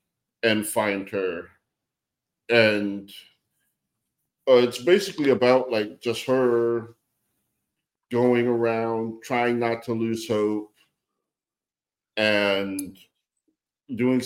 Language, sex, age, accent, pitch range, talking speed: English, male, 50-69, American, 100-115 Hz, 85 wpm